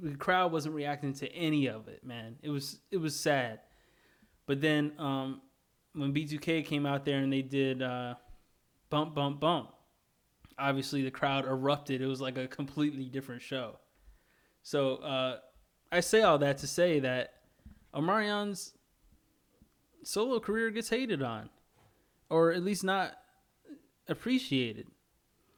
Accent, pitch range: American, 135-170 Hz